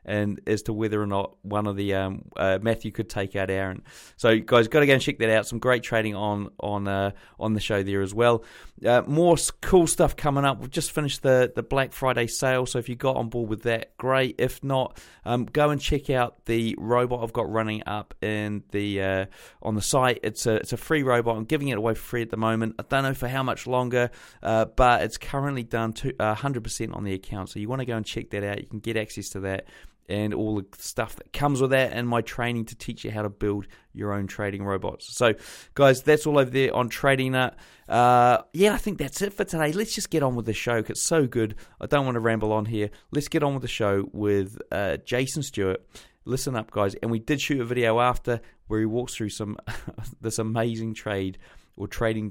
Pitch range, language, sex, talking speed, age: 105-130 Hz, English, male, 245 wpm, 30-49